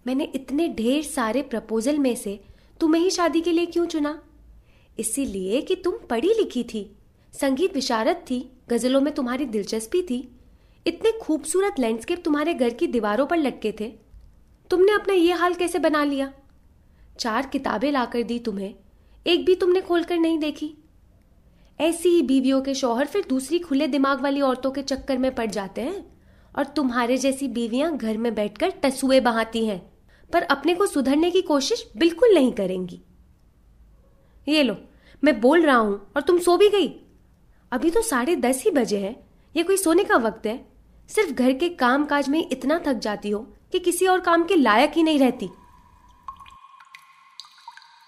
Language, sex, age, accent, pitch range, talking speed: Hindi, female, 20-39, native, 245-350 Hz, 170 wpm